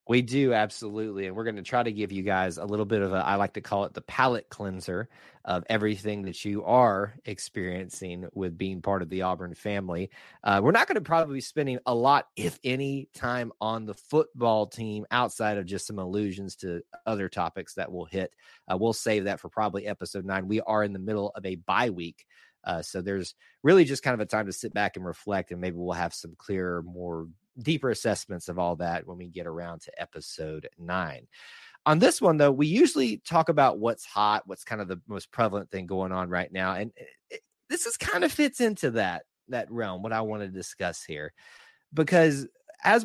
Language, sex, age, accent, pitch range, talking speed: English, male, 30-49, American, 95-125 Hz, 215 wpm